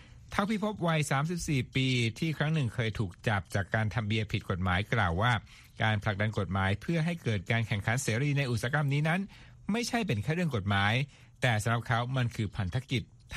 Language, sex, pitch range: Thai, male, 105-140 Hz